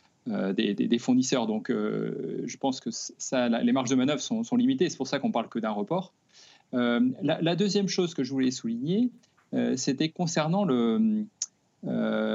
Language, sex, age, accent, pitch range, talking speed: French, male, 40-59, French, 130-200 Hz, 205 wpm